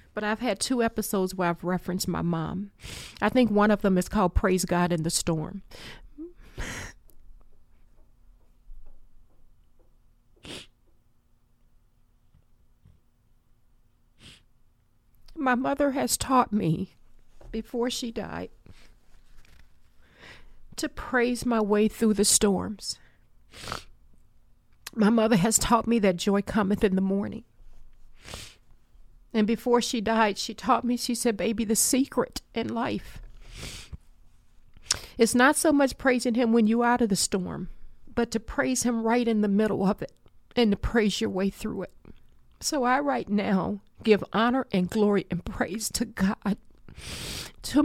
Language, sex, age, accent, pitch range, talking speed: English, female, 50-69, American, 185-240 Hz, 130 wpm